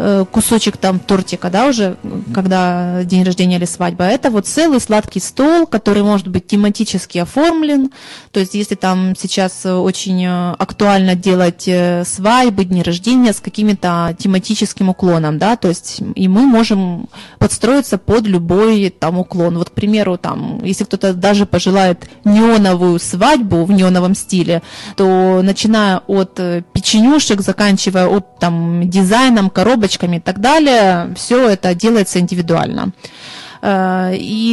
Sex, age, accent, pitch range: female, 20-39, native, 185-220 Hz